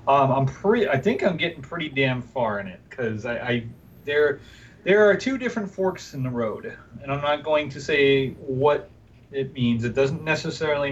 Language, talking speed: English, 205 wpm